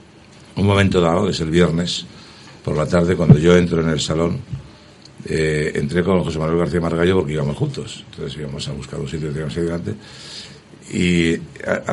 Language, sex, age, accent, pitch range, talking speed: Spanish, male, 60-79, Spanish, 75-90 Hz, 175 wpm